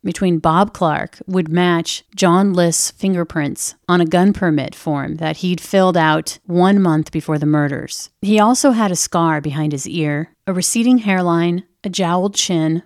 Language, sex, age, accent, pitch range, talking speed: English, female, 40-59, American, 155-195 Hz, 170 wpm